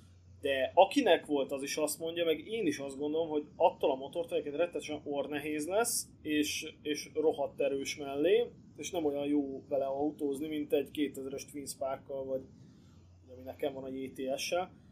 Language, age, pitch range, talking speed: Hungarian, 20-39, 130-155 Hz, 165 wpm